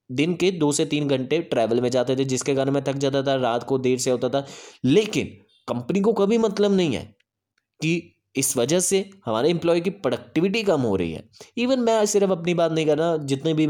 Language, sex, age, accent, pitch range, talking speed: Hindi, male, 20-39, native, 120-150 Hz, 225 wpm